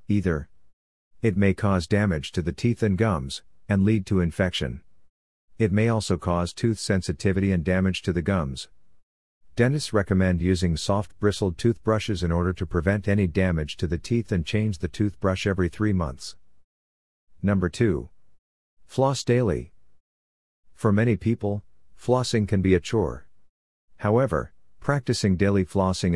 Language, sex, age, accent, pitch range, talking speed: English, male, 50-69, American, 85-105 Hz, 145 wpm